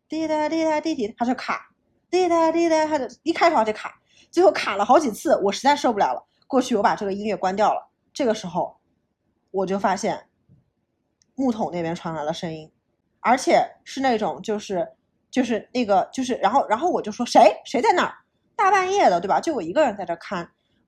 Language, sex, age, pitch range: Chinese, female, 20-39, 190-275 Hz